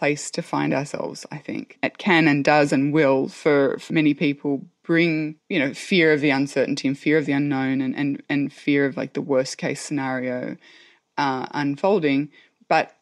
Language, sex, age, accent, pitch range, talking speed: English, female, 20-39, Australian, 145-195 Hz, 190 wpm